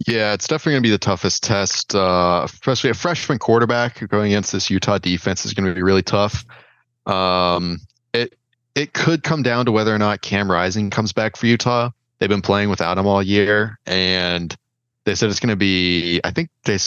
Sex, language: male, English